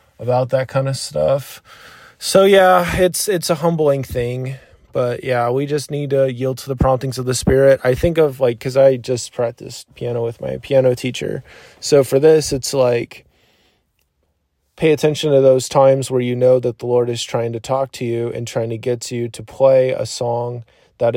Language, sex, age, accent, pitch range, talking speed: English, male, 20-39, American, 115-135 Hz, 200 wpm